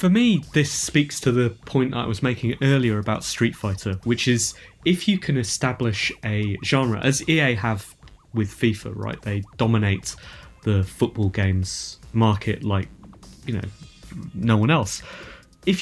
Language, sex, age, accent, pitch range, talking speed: English, male, 20-39, British, 110-125 Hz, 155 wpm